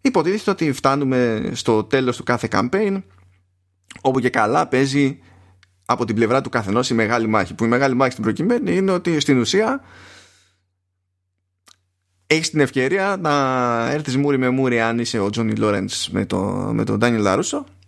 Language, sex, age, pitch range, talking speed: Greek, male, 20-39, 95-135 Hz, 160 wpm